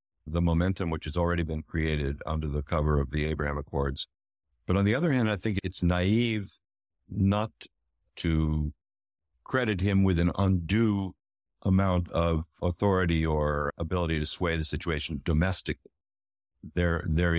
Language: English